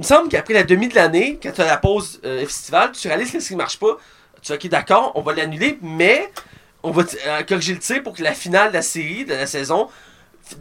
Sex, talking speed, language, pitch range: male, 270 wpm, French, 180-245 Hz